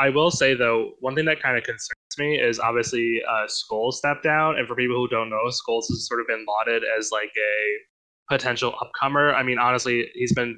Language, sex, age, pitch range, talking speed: English, male, 10-29, 115-140 Hz, 220 wpm